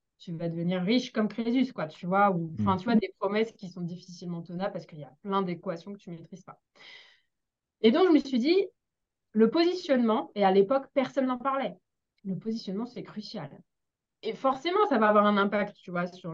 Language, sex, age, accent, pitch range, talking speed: French, female, 20-39, French, 185-250 Hz, 215 wpm